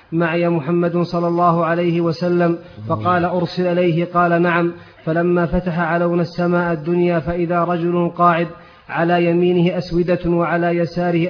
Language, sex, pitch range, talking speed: Arabic, male, 170-175 Hz, 130 wpm